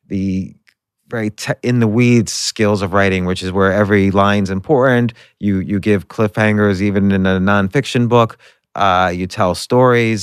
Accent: American